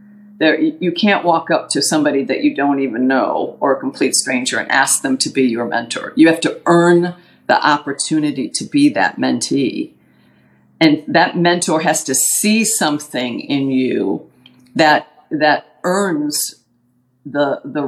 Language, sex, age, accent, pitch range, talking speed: English, female, 50-69, American, 145-180 Hz, 160 wpm